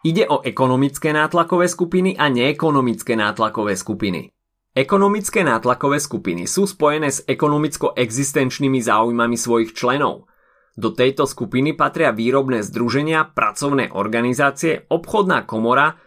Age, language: 30-49, Slovak